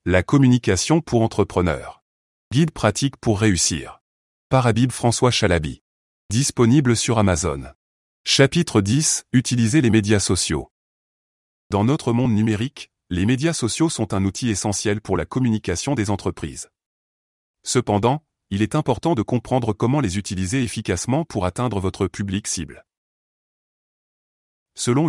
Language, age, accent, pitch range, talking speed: French, 30-49, French, 95-130 Hz, 125 wpm